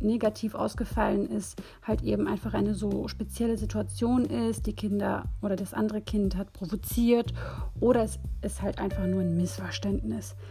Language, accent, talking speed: German, German, 155 wpm